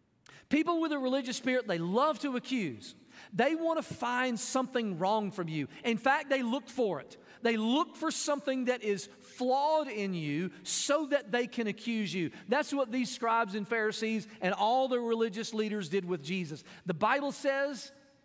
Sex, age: male, 40-59